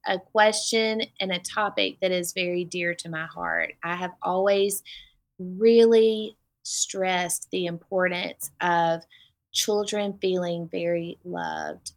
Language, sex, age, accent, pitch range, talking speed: English, female, 20-39, American, 175-210 Hz, 120 wpm